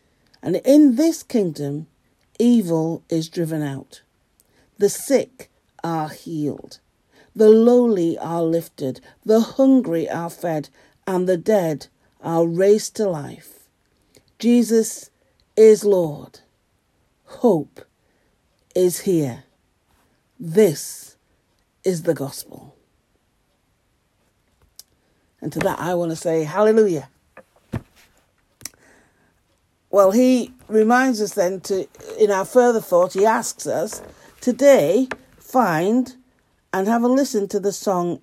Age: 50-69